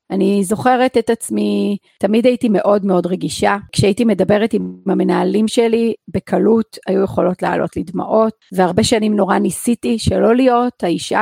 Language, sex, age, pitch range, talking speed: Hebrew, female, 40-59, 185-235 Hz, 145 wpm